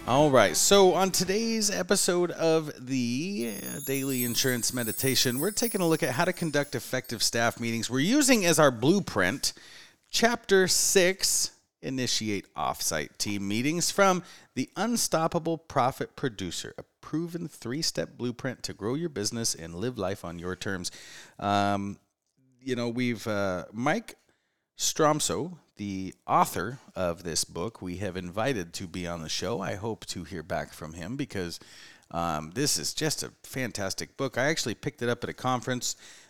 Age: 30-49